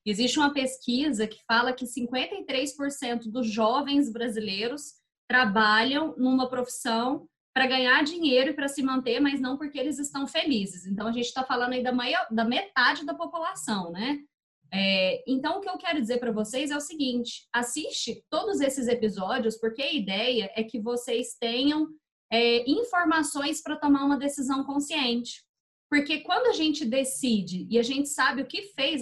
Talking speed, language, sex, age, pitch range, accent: 170 wpm, Portuguese, female, 20-39, 225-285 Hz, Brazilian